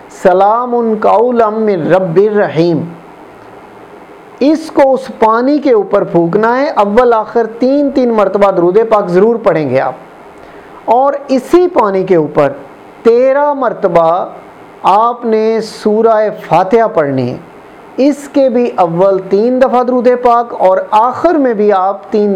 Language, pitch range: Urdu, 175-230 Hz